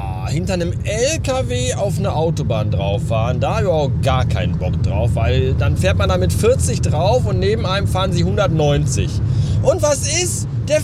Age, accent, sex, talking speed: 30-49, German, male, 190 wpm